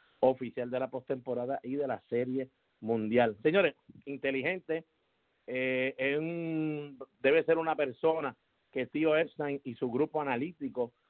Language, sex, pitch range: English, male, 120-155 Hz